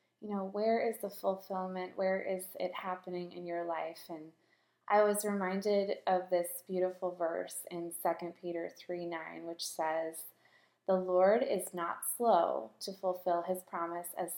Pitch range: 175-200 Hz